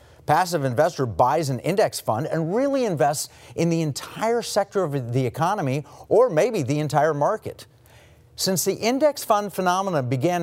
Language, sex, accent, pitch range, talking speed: English, male, American, 125-185 Hz, 155 wpm